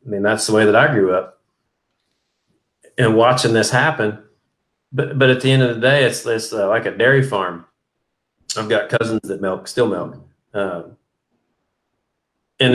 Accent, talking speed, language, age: American, 175 wpm, English, 30-49